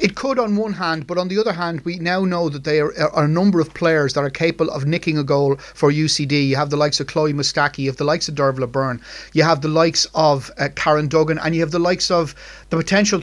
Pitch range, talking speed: 150-175 Hz, 270 wpm